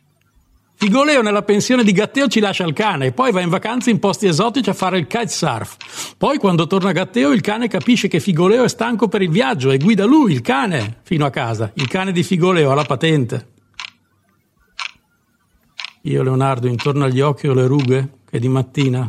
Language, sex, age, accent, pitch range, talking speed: Italian, male, 60-79, native, 125-190 Hz, 190 wpm